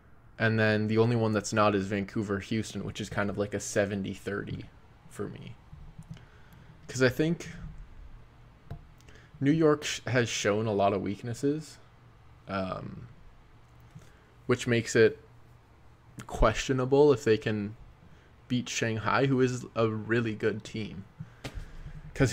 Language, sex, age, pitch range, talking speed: English, male, 20-39, 105-125 Hz, 130 wpm